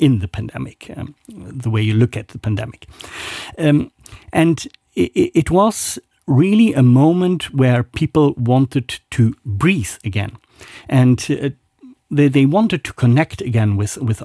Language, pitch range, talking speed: English, 115-150 Hz, 145 wpm